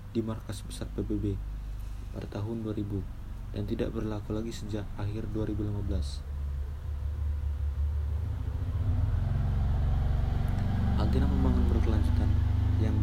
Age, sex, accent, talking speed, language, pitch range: 20-39, male, native, 85 wpm, Indonesian, 85-110 Hz